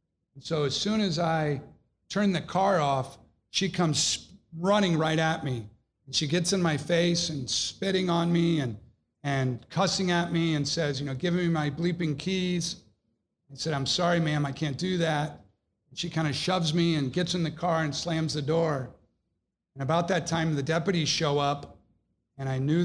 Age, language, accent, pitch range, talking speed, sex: 50-69, English, American, 135-170 Hz, 195 wpm, male